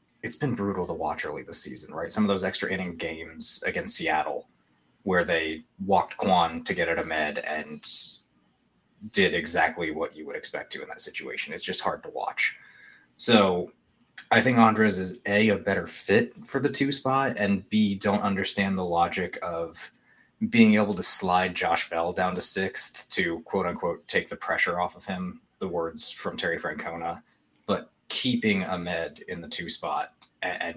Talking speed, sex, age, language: 175 wpm, male, 20-39, English